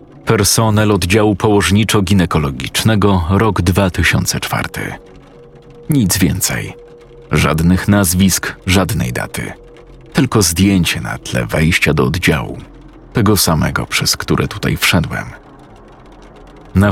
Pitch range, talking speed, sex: 90-110 Hz, 90 wpm, male